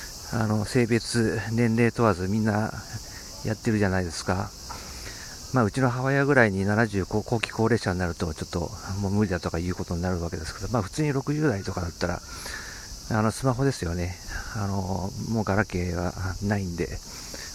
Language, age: Japanese, 50-69